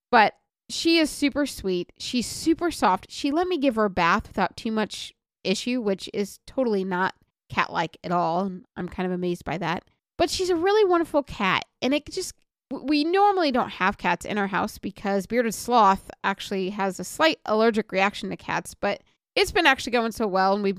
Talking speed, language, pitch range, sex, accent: 200 wpm, English, 195-310 Hz, female, American